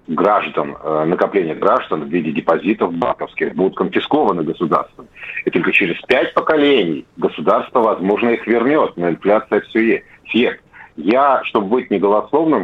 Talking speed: 130 wpm